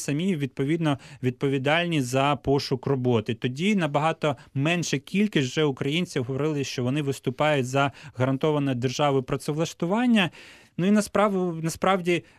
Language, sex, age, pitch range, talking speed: Ukrainian, male, 20-39, 135-165 Hz, 110 wpm